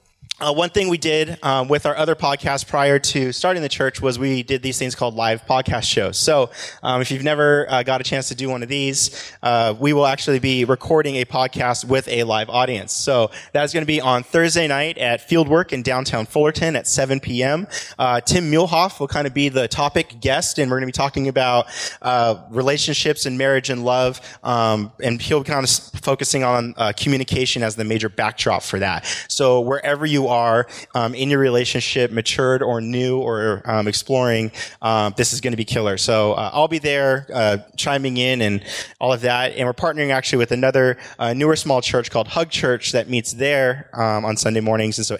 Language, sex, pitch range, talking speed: English, male, 115-140 Hz, 215 wpm